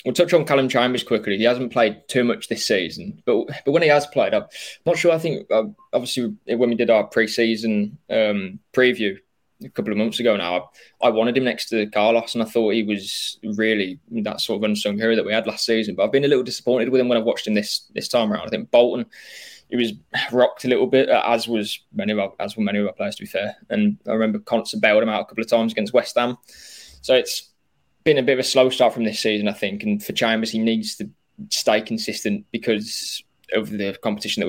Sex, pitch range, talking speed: male, 105-125 Hz, 250 wpm